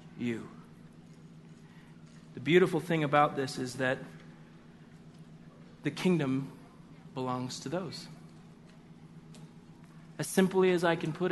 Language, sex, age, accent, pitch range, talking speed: English, male, 40-59, American, 145-205 Hz, 100 wpm